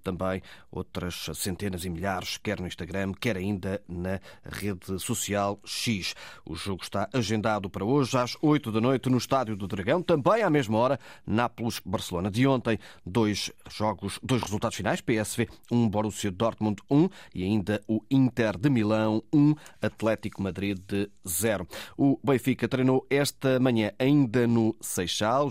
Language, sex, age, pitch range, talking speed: Portuguese, male, 30-49, 95-125 Hz, 155 wpm